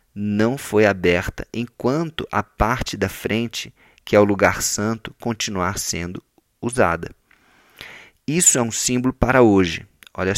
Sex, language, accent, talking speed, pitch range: male, Portuguese, Brazilian, 135 wpm, 105-135 Hz